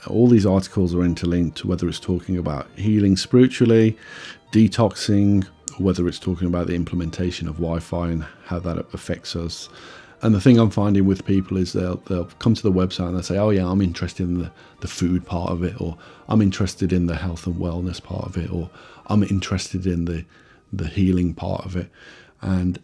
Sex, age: male, 40-59